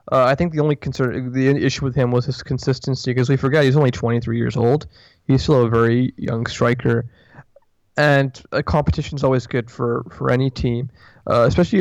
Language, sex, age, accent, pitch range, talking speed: English, male, 20-39, American, 120-135 Hz, 195 wpm